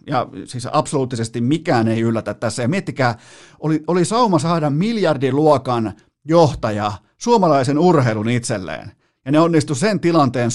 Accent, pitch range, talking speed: native, 115-150 Hz, 130 wpm